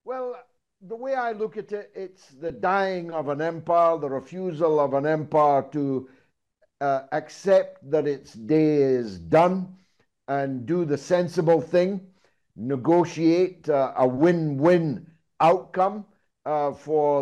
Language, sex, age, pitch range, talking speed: English, male, 60-79, 140-170 Hz, 130 wpm